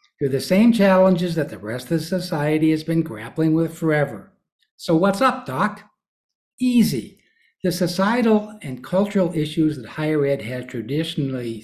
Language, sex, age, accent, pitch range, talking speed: English, male, 60-79, American, 150-200 Hz, 155 wpm